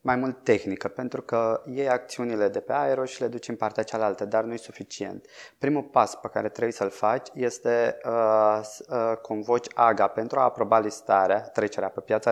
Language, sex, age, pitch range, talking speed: Romanian, male, 20-39, 110-135 Hz, 185 wpm